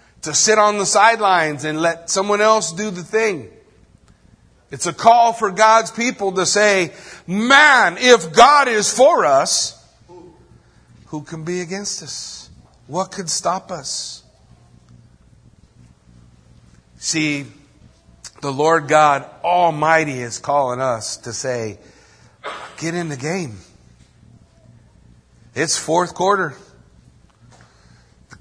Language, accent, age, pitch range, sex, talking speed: English, American, 50-69, 135-190 Hz, male, 110 wpm